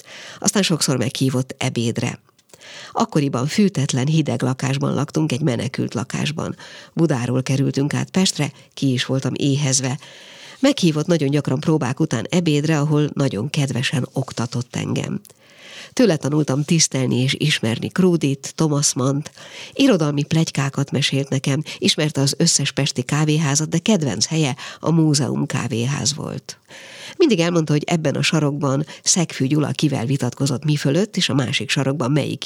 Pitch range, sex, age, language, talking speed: 135-170 Hz, female, 50-69, Hungarian, 135 wpm